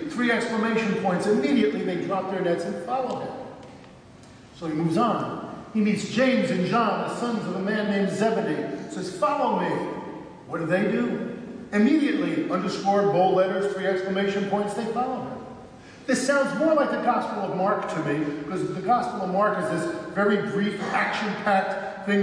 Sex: male